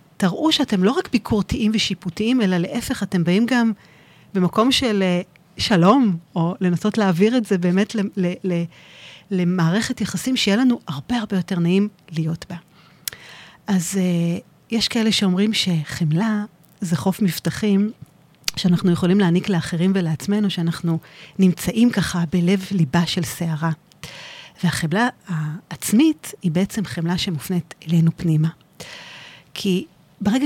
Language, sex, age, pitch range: Hebrew, female, 30-49, 165-205 Hz